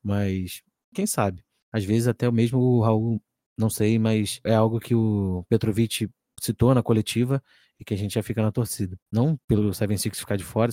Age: 20-39